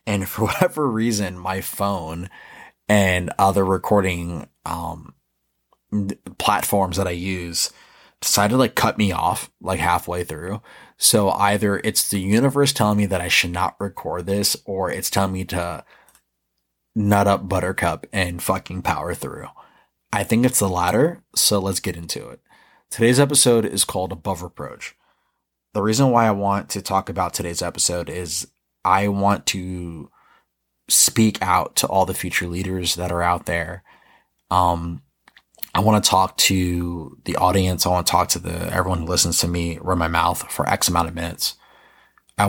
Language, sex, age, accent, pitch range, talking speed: English, male, 20-39, American, 85-100 Hz, 165 wpm